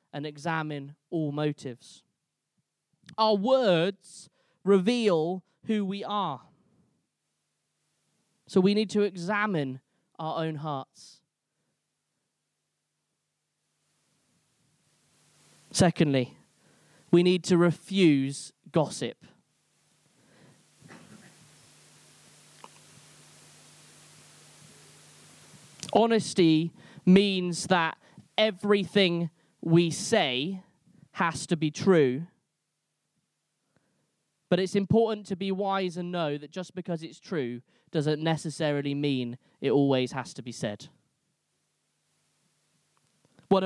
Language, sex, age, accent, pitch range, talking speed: English, male, 20-39, British, 150-195 Hz, 80 wpm